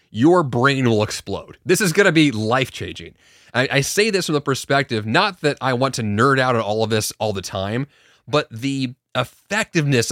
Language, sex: English, male